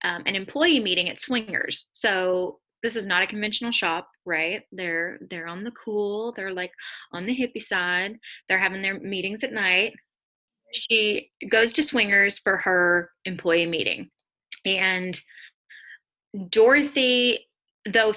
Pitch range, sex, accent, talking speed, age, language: 185-240 Hz, female, American, 140 wpm, 20-39, English